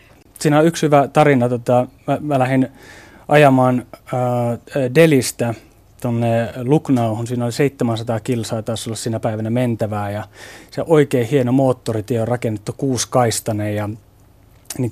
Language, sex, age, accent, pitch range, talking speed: Finnish, male, 30-49, native, 115-135 Hz, 135 wpm